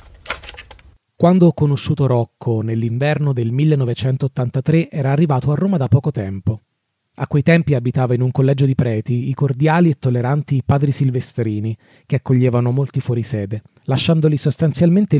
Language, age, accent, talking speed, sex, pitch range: Italian, 30-49, native, 140 wpm, male, 120-155 Hz